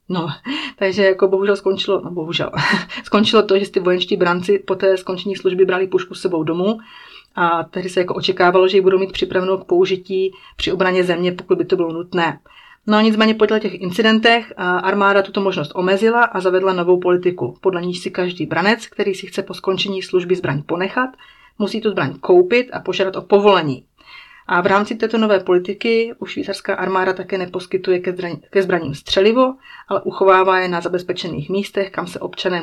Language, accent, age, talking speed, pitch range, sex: Czech, native, 30-49, 185 wpm, 180-200 Hz, female